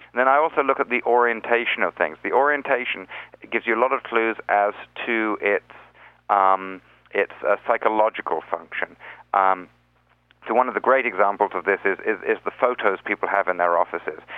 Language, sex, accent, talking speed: English, male, British, 185 wpm